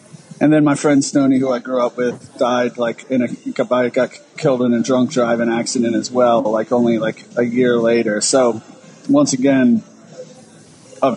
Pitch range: 120-140 Hz